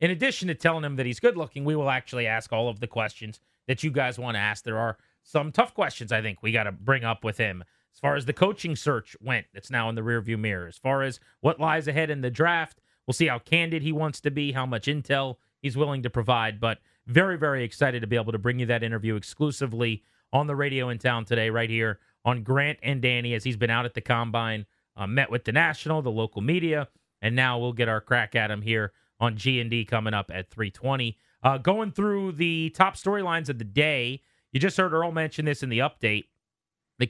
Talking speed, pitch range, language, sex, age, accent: 240 wpm, 115-155 Hz, English, male, 30-49, American